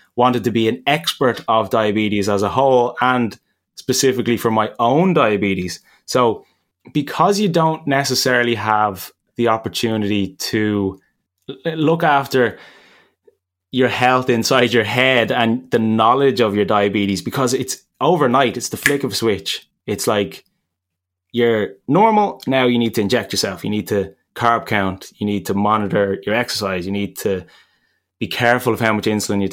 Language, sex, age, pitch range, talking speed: English, male, 20-39, 105-125 Hz, 160 wpm